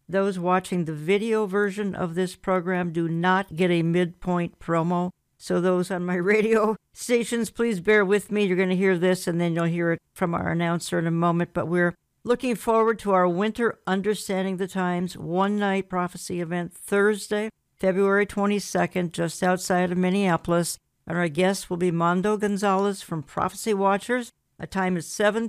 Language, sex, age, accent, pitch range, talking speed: English, female, 60-79, American, 175-200 Hz, 175 wpm